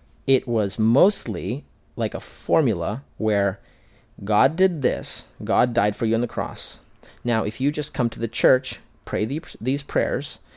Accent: American